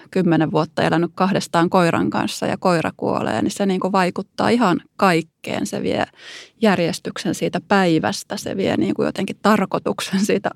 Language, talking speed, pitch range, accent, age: Finnish, 150 wpm, 165-205 Hz, native, 20-39